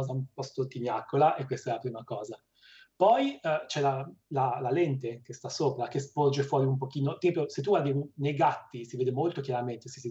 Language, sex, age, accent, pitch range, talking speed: Italian, male, 30-49, native, 125-145 Hz, 215 wpm